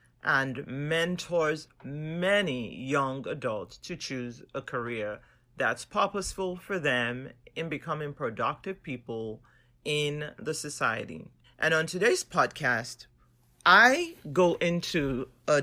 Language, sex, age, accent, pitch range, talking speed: English, male, 40-59, American, 135-180 Hz, 110 wpm